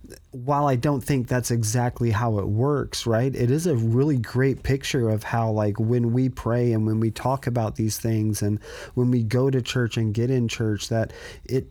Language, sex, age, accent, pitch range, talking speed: English, male, 30-49, American, 105-120 Hz, 210 wpm